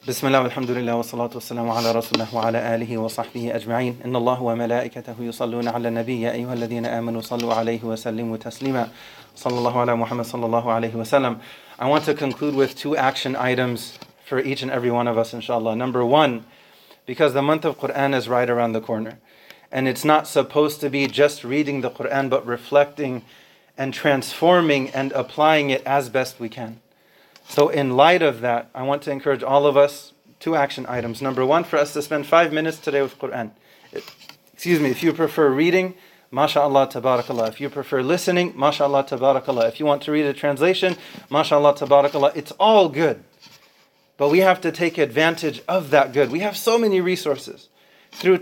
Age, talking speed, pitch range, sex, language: 30-49, 145 wpm, 120-155 Hz, male, English